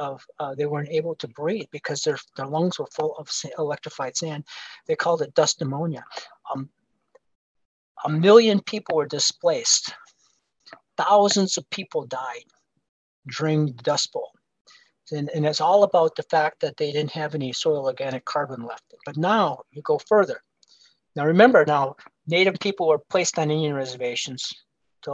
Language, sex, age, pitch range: English, male, 40-59, 150-185 Hz